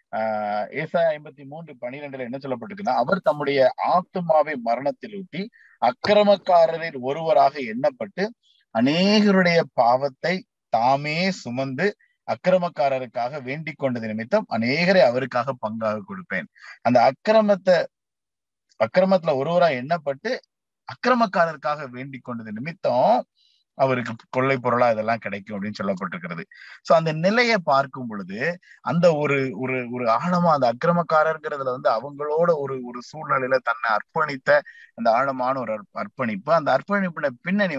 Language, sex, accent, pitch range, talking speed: Tamil, male, native, 130-185 Hz, 100 wpm